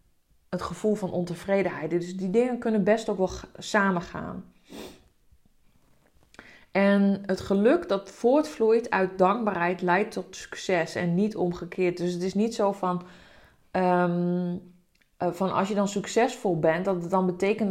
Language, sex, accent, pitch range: Dutch, female, Dutch, 175-200 Hz